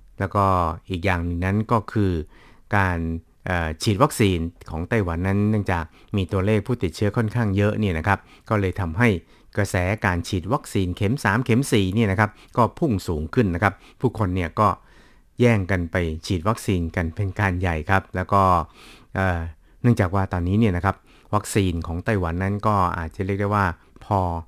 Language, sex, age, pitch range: Thai, male, 60-79, 90-105 Hz